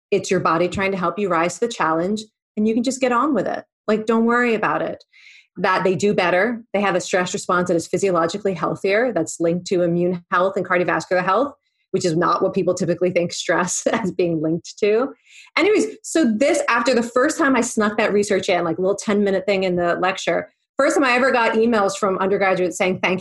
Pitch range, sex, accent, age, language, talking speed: 180-225 Hz, female, American, 30-49, English, 230 wpm